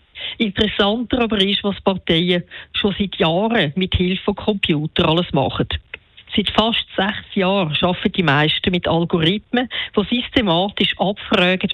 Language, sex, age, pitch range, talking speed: German, female, 50-69, 165-215 Hz, 135 wpm